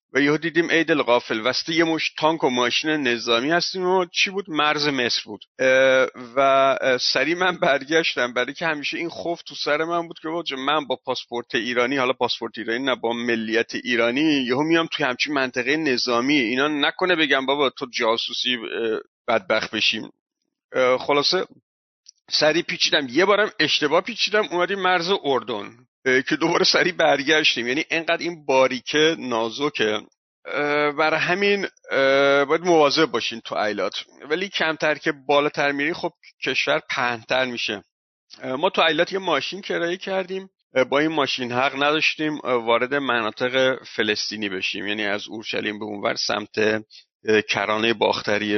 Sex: male